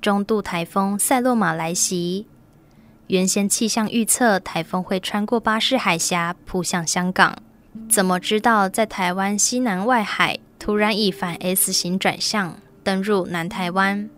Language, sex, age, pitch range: Chinese, female, 10-29, 180-220 Hz